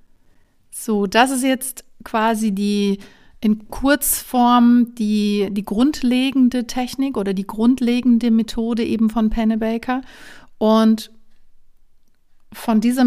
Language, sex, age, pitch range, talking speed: German, female, 40-59, 205-240 Hz, 100 wpm